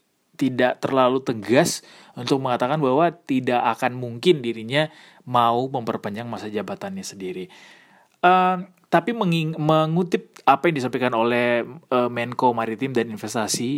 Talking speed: 120 wpm